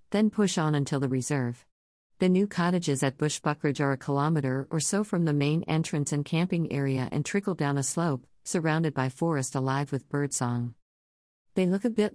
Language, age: English, 50-69